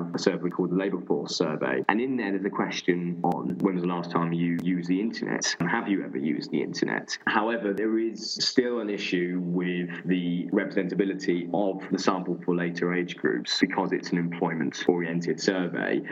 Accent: British